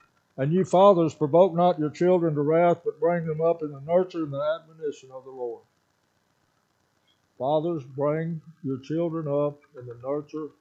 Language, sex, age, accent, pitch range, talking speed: English, male, 60-79, American, 135-165 Hz, 170 wpm